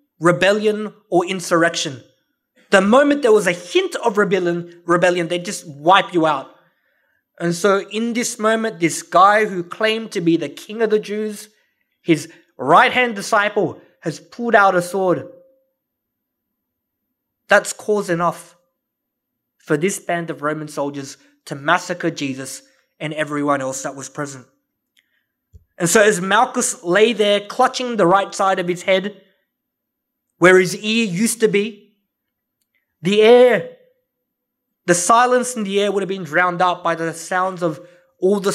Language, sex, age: English, male, 20-39